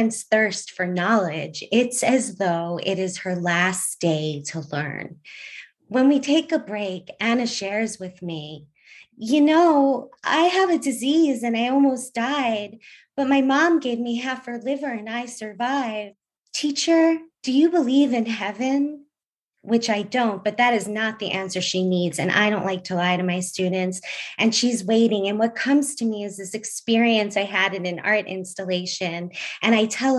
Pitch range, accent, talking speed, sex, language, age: 195-240 Hz, American, 175 wpm, female, English, 20-39